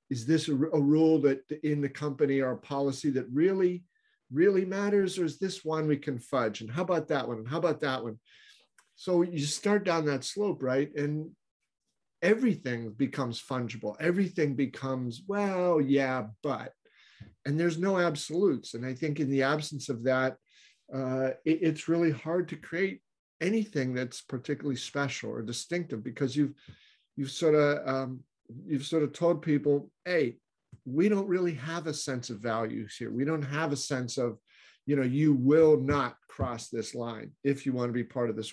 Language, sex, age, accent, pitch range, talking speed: English, male, 50-69, American, 130-155 Hz, 180 wpm